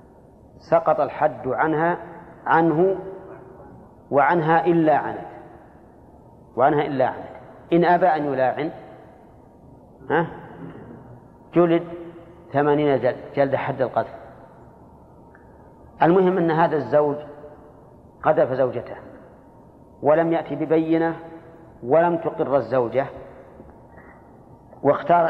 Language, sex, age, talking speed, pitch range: Arabic, male, 40-59, 80 wpm, 125-160 Hz